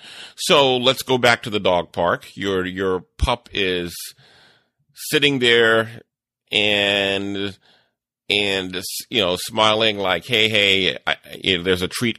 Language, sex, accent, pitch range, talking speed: English, male, American, 90-115 Hz, 140 wpm